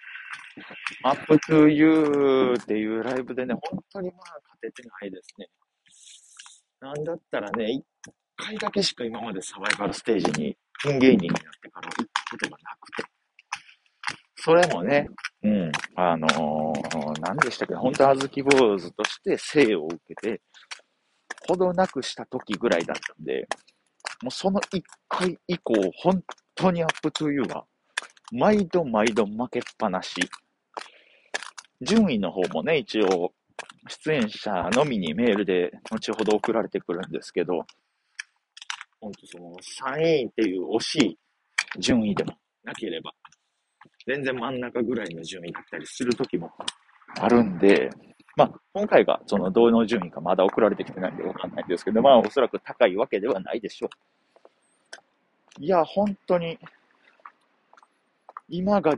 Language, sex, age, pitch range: Japanese, male, 40-59, 115-175 Hz